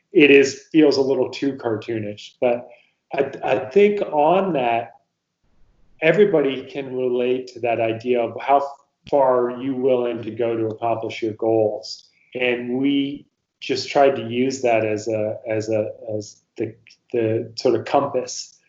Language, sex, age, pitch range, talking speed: English, male, 30-49, 115-140 Hz, 155 wpm